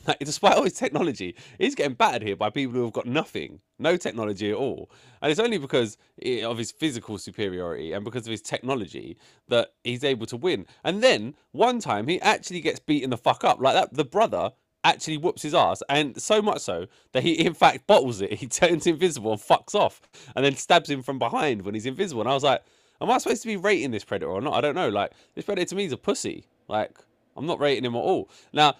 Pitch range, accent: 105-160 Hz, British